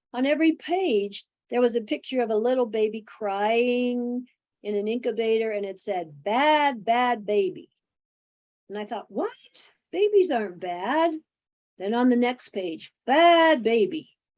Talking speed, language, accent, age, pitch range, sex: 145 wpm, English, American, 50-69, 200-260 Hz, female